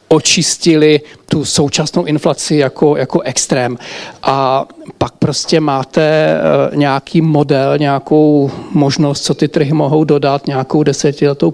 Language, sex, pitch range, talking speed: Czech, male, 145-160 Hz, 115 wpm